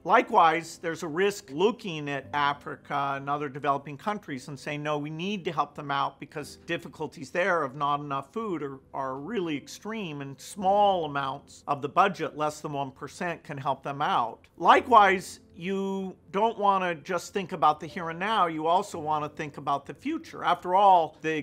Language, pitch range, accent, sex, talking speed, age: English, 150-190 Hz, American, male, 190 wpm, 50-69